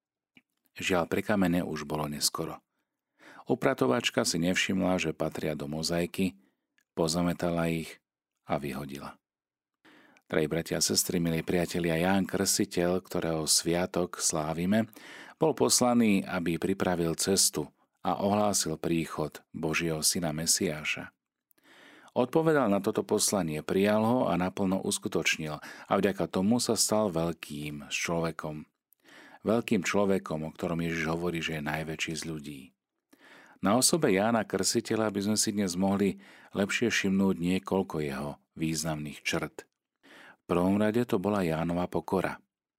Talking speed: 120 wpm